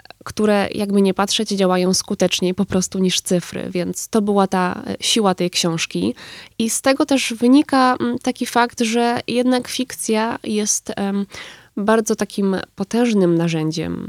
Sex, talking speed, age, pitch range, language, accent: female, 135 wpm, 20-39, 185-225 Hz, Polish, native